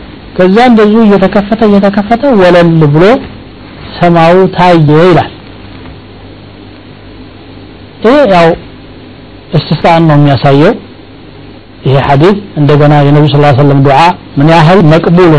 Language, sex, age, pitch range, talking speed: Amharic, male, 60-79, 135-170 Hz, 100 wpm